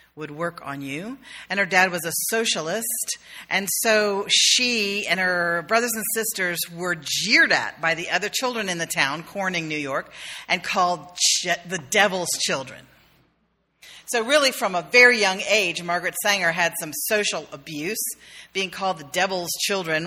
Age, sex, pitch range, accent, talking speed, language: 40-59, female, 170-215 Hz, American, 160 wpm, English